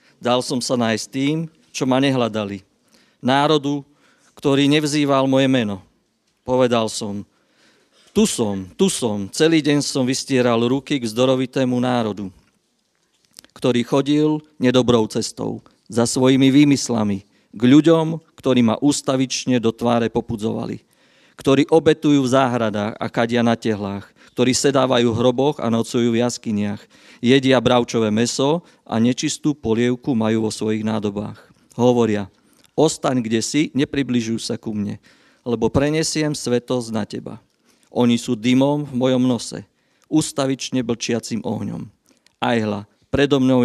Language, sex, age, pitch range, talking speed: Slovak, male, 40-59, 115-140 Hz, 130 wpm